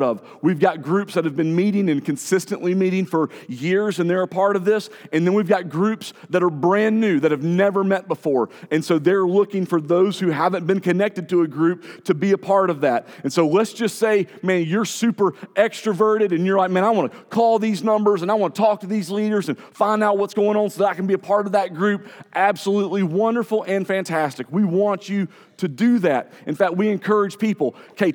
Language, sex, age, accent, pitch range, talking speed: English, male, 40-59, American, 175-210 Hz, 240 wpm